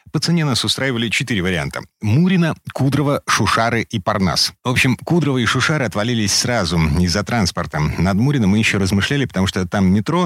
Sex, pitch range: male, 95-125 Hz